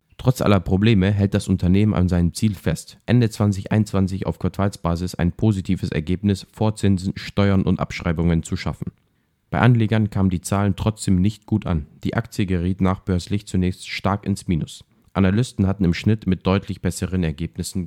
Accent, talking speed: German, 165 wpm